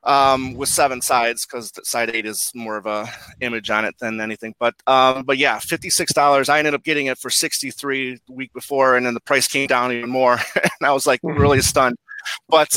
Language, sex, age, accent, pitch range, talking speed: English, male, 30-49, American, 130-190 Hz, 215 wpm